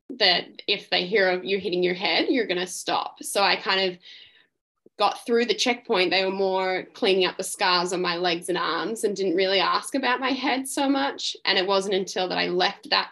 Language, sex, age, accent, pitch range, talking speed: English, female, 10-29, Australian, 180-210 Hz, 230 wpm